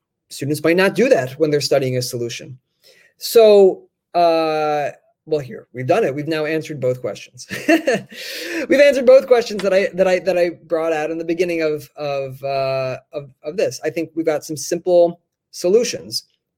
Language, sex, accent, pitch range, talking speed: English, male, American, 140-185 Hz, 180 wpm